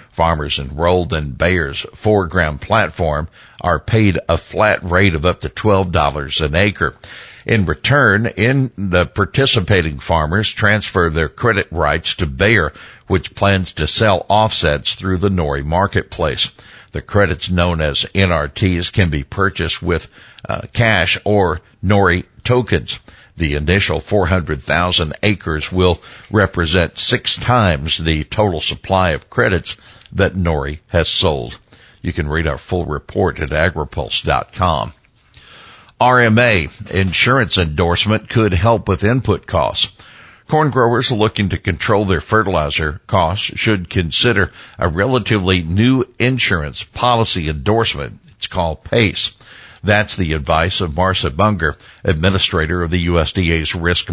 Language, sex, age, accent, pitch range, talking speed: English, male, 60-79, American, 80-105 Hz, 125 wpm